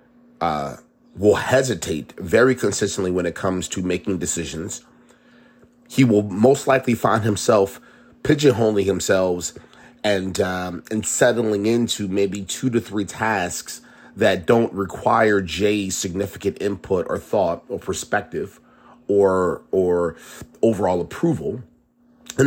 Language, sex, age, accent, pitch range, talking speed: English, male, 30-49, American, 95-115 Hz, 120 wpm